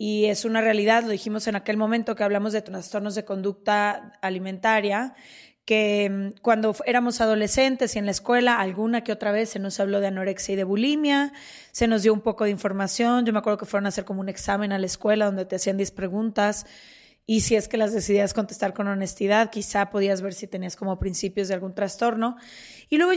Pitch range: 200-225 Hz